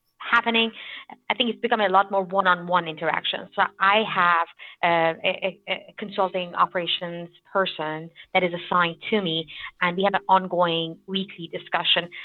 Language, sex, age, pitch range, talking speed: English, female, 30-49, 175-200 Hz, 150 wpm